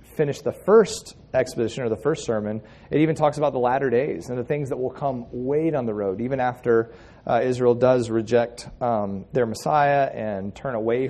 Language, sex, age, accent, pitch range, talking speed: English, male, 30-49, American, 115-140 Hz, 200 wpm